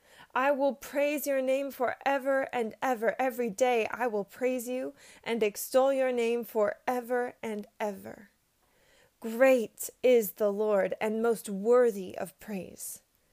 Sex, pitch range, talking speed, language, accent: female, 215-260 Hz, 135 wpm, English, American